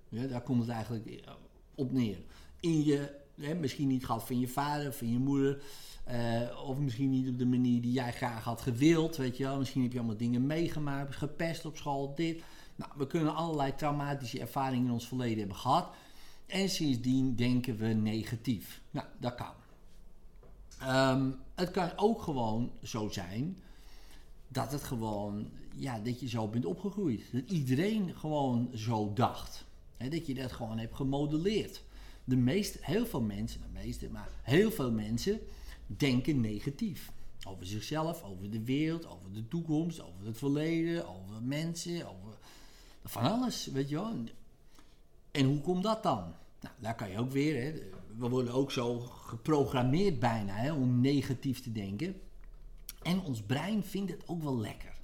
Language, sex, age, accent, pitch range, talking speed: Dutch, male, 50-69, Dutch, 115-150 Hz, 170 wpm